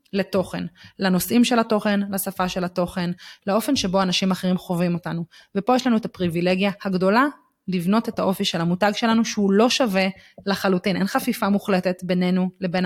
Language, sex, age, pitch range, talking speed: Hebrew, female, 20-39, 185-215 Hz, 160 wpm